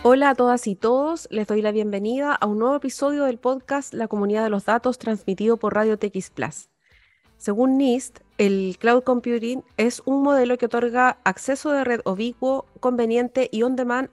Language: Spanish